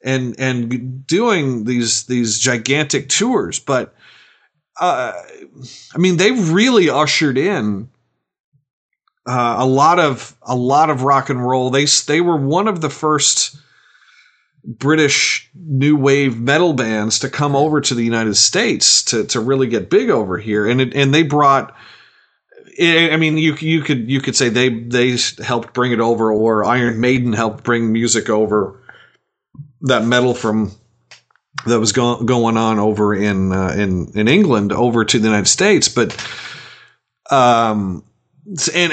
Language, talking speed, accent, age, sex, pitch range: English, 155 wpm, American, 40-59, male, 110-140 Hz